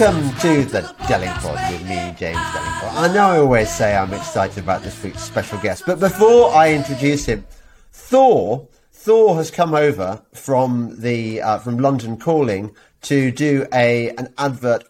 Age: 40-59